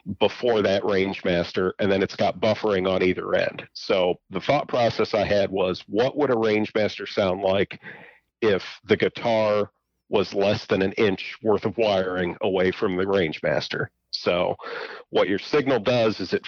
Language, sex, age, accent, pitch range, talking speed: English, male, 40-59, American, 95-110 Hz, 170 wpm